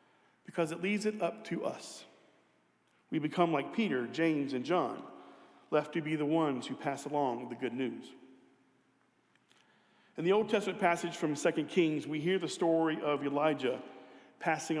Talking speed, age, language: 160 wpm, 40-59, English